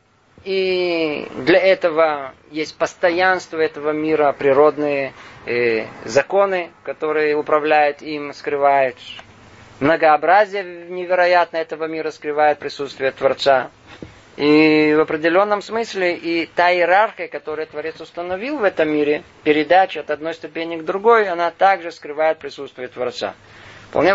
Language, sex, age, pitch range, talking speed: Russian, male, 20-39, 135-175 Hz, 110 wpm